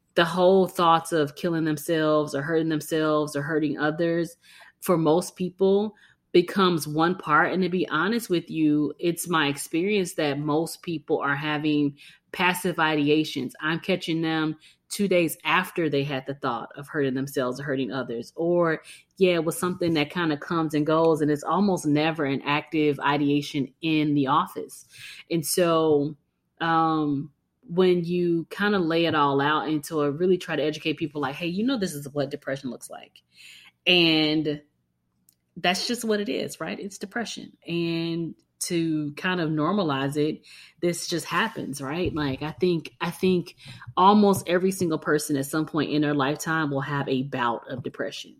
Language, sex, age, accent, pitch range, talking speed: English, female, 20-39, American, 145-170 Hz, 170 wpm